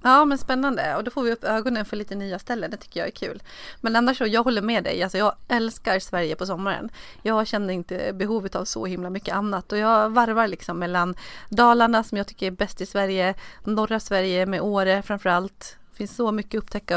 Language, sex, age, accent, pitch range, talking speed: Swedish, female, 30-49, native, 185-220 Hz, 225 wpm